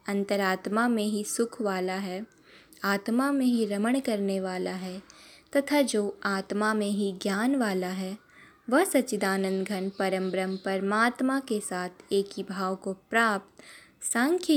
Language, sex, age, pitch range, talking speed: Hindi, female, 20-39, 195-240 Hz, 145 wpm